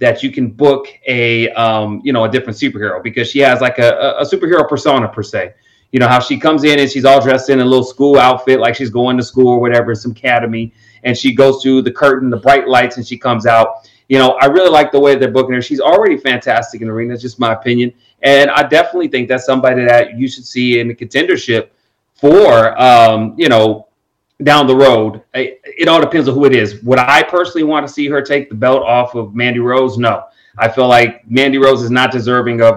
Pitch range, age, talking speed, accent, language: 115-135 Hz, 30-49, 235 wpm, American, English